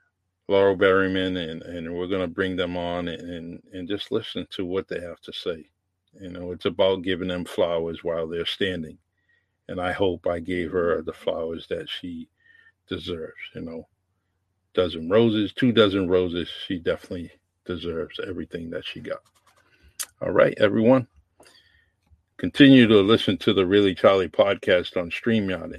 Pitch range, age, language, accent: 90-105 Hz, 50-69, English, American